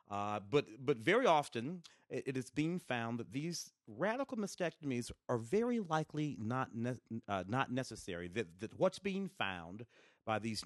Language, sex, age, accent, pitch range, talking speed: English, male, 40-59, American, 100-130 Hz, 160 wpm